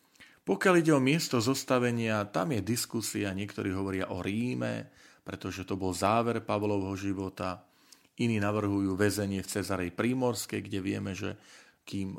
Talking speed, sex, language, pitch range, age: 140 wpm, male, Slovak, 95-110 Hz, 40-59